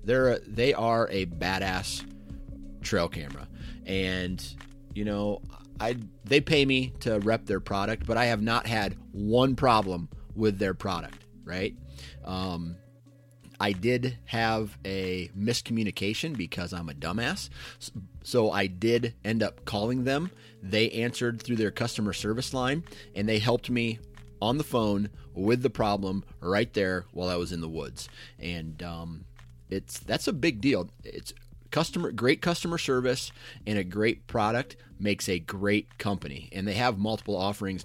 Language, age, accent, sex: English, 30-49, American, male